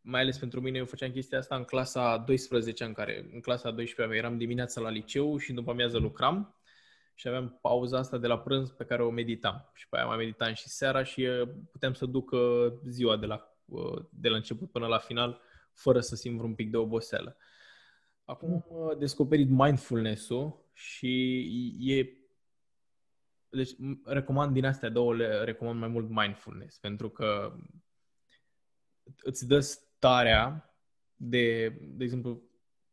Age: 20-39